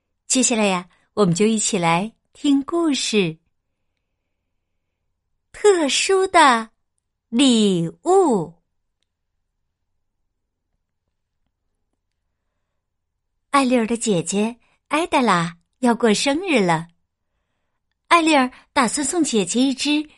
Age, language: 50-69, Chinese